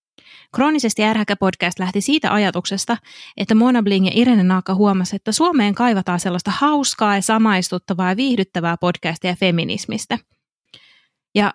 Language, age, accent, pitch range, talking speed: Finnish, 20-39, native, 180-220 Hz, 125 wpm